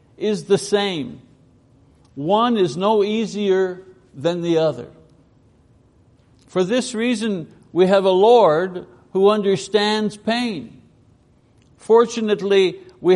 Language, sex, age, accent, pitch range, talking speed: English, male, 60-79, American, 140-205 Hz, 100 wpm